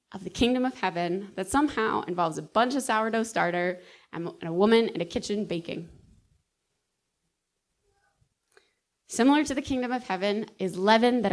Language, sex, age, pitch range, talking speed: English, female, 20-39, 190-240 Hz, 155 wpm